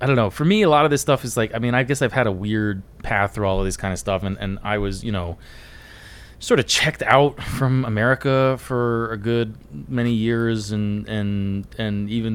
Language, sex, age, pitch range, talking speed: English, male, 20-39, 100-125 Hz, 240 wpm